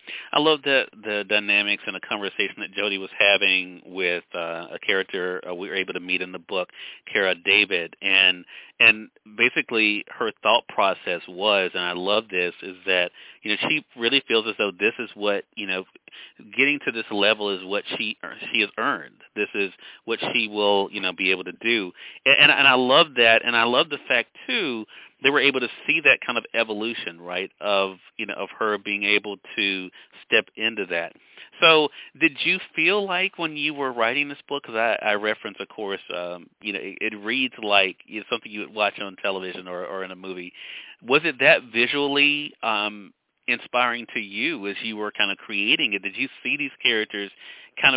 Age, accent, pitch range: 40-59, American, 95-115 Hz